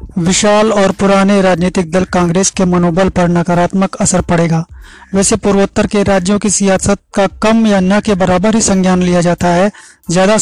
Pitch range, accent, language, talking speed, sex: 180-210 Hz, native, Hindi, 175 wpm, male